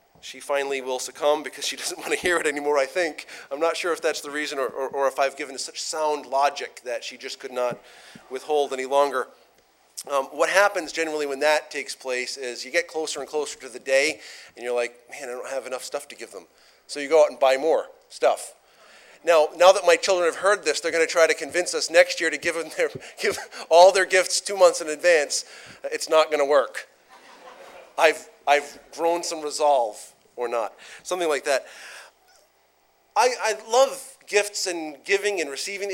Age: 30-49